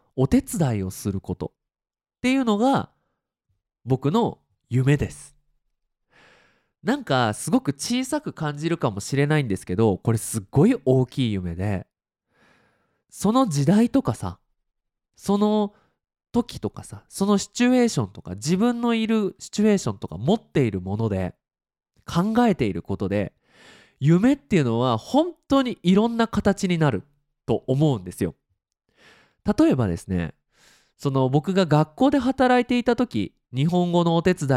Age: 20-39